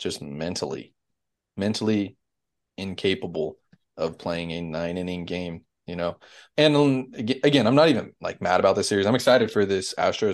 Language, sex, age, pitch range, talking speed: English, male, 20-39, 90-105 Hz, 155 wpm